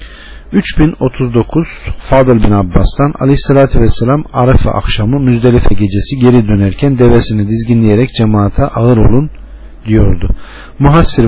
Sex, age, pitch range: male, 40-59, 105-130 Hz